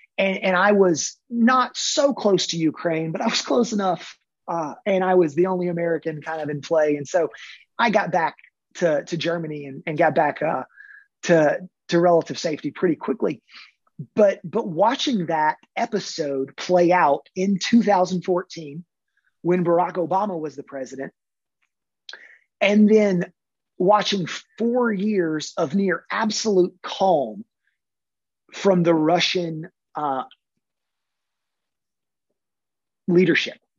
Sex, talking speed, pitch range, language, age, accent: male, 130 wpm, 165-205 Hz, English, 30-49, American